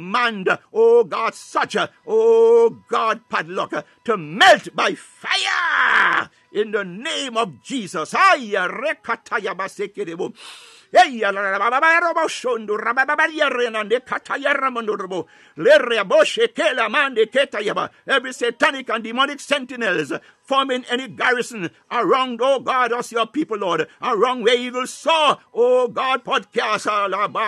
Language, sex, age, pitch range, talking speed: English, male, 60-79, 225-310 Hz, 80 wpm